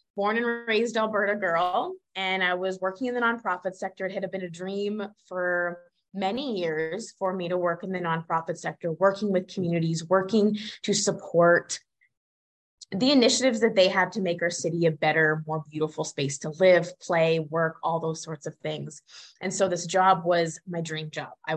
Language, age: English, 20-39